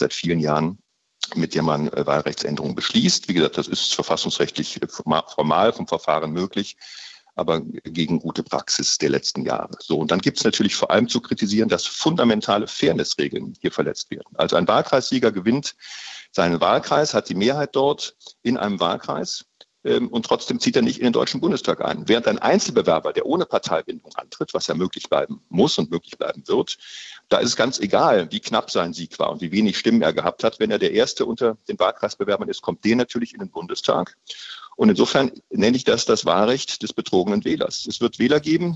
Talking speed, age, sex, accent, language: 195 wpm, 50-69, male, German, German